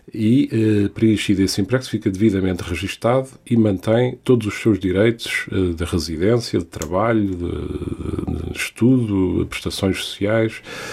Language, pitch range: Portuguese, 95-115 Hz